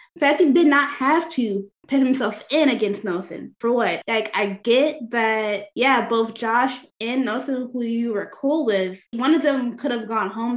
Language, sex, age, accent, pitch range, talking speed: English, female, 20-39, American, 215-270 Hz, 185 wpm